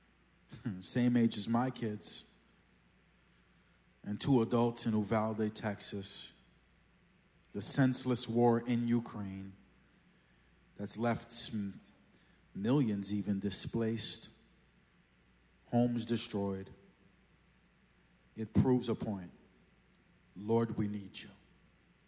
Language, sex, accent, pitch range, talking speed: English, male, American, 105-130 Hz, 85 wpm